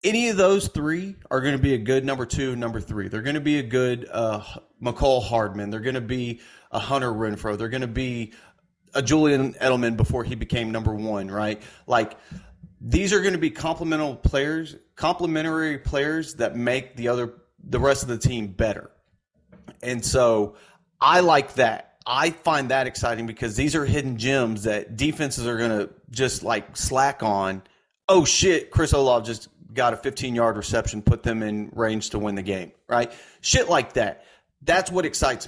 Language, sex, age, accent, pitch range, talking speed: English, male, 30-49, American, 110-140 Hz, 185 wpm